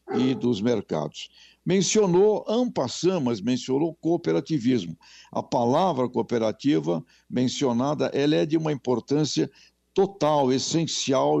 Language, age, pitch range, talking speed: Portuguese, 60-79, 120-160 Hz, 100 wpm